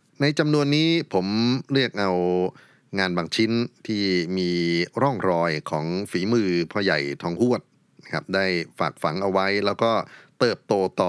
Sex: male